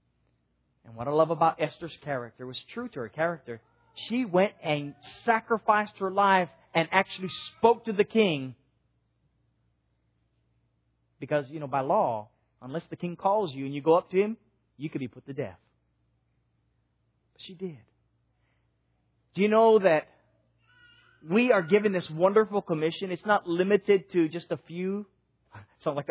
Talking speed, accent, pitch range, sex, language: 155 wpm, American, 130-220 Hz, male, English